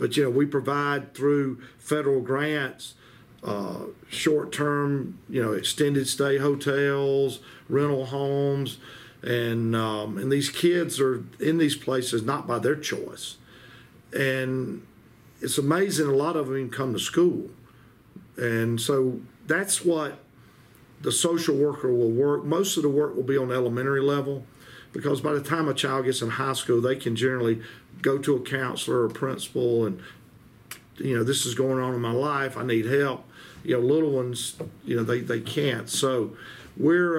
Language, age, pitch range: English, 50-69, 125-145 Hz